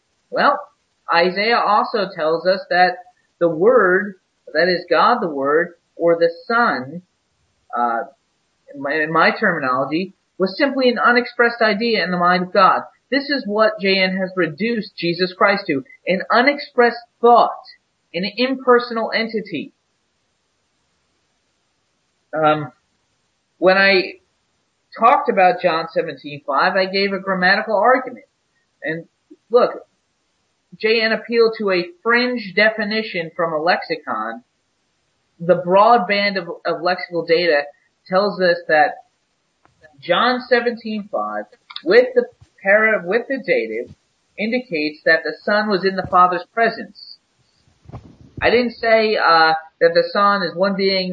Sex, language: male, English